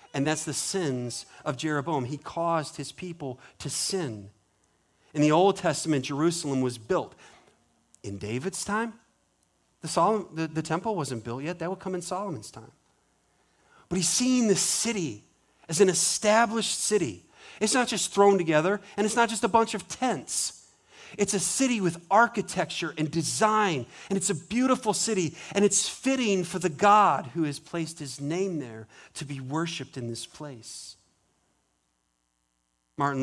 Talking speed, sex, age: 160 wpm, male, 40-59